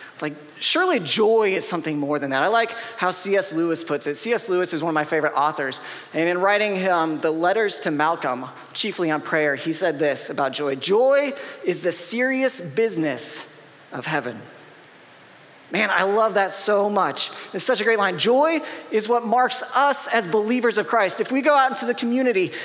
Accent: American